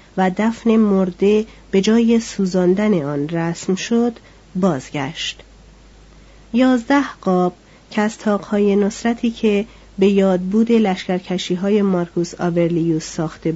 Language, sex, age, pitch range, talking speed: Persian, female, 40-59, 170-225 Hz, 100 wpm